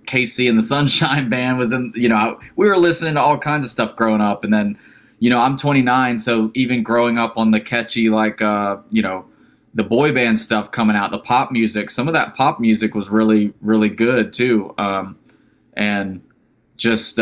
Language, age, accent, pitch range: English, 20-39, American, 110-130 Hz